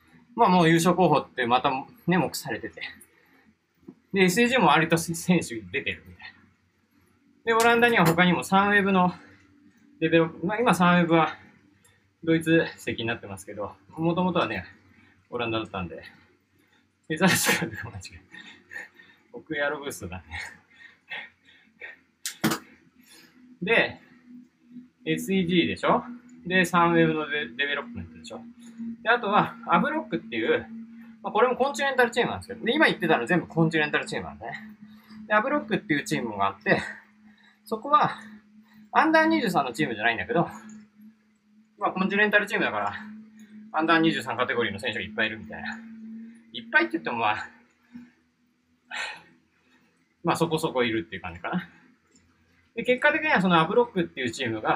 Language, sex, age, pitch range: Japanese, male, 20-39, 160-230 Hz